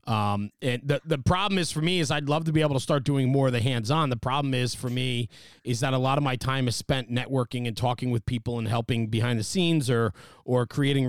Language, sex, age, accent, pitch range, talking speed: English, male, 30-49, American, 120-145 Hz, 265 wpm